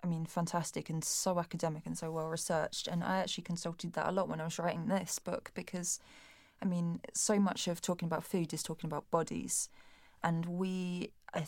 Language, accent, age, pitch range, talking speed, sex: English, British, 20-39, 160-185 Hz, 205 wpm, female